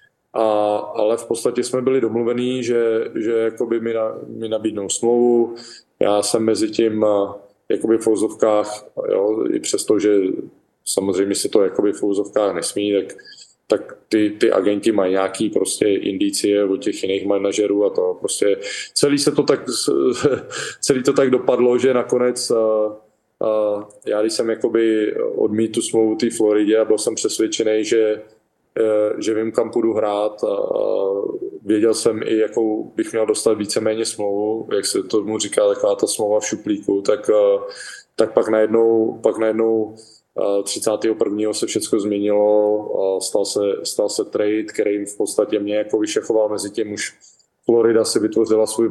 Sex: male